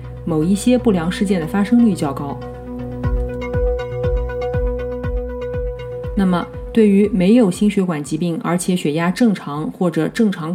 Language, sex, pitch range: Chinese, female, 155-205 Hz